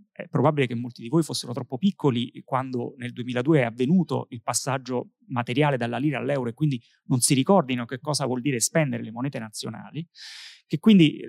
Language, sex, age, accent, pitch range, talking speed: Italian, male, 30-49, native, 125-165 Hz, 185 wpm